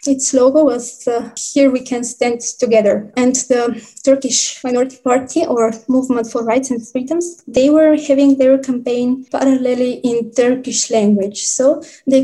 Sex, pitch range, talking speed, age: female, 235-270 Hz, 150 wpm, 20-39